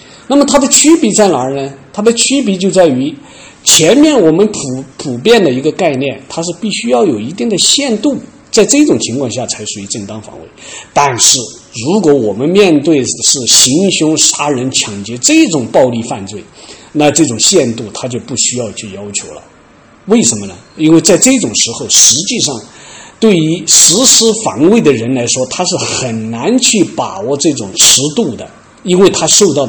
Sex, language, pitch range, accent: male, Chinese, 115-195 Hz, native